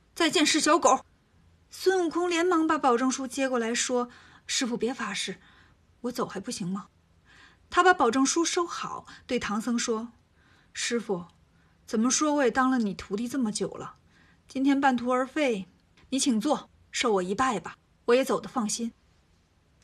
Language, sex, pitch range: Chinese, female, 205-275 Hz